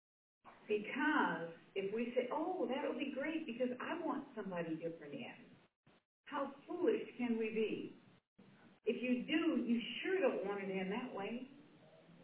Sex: female